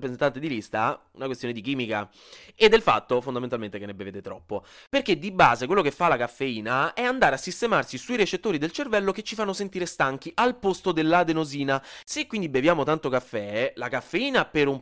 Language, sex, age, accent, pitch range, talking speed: Italian, male, 20-39, native, 130-195 Hz, 195 wpm